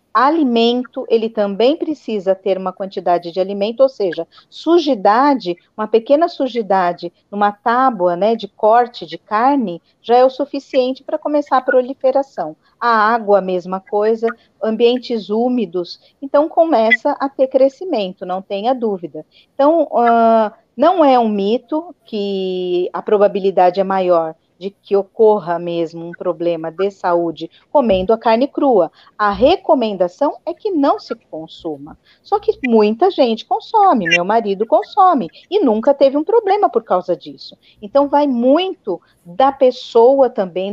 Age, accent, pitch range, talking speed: 40-59, Brazilian, 195-280 Hz, 140 wpm